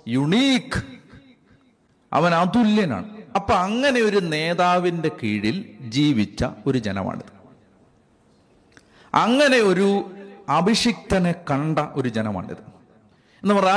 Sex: male